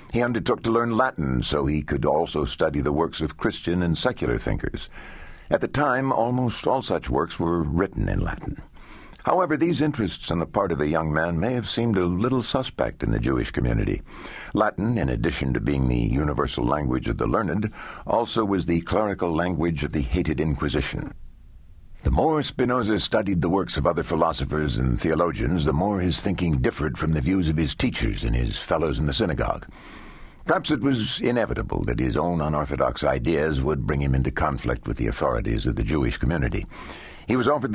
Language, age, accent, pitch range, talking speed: English, 60-79, American, 75-100 Hz, 190 wpm